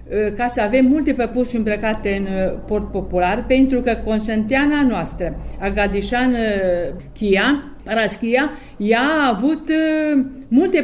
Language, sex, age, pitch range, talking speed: Romanian, female, 50-69, 200-265 Hz, 105 wpm